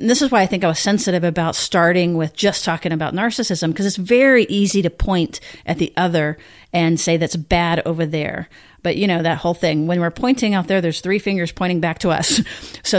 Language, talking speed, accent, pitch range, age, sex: English, 230 wpm, American, 165-200 Hz, 40-59, female